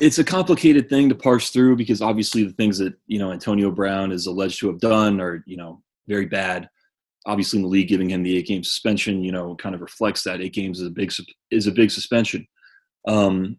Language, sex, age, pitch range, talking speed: English, male, 20-39, 95-115 Hz, 225 wpm